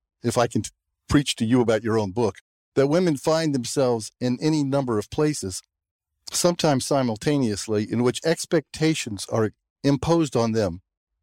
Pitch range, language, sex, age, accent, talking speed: 95-135 Hz, English, male, 50-69, American, 150 wpm